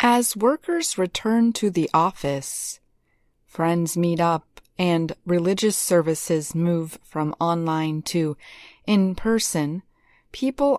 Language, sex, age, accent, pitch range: Chinese, female, 30-49, American, 165-240 Hz